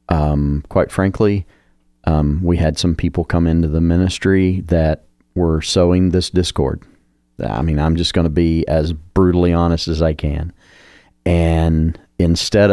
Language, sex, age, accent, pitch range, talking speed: English, male, 40-59, American, 80-90 Hz, 150 wpm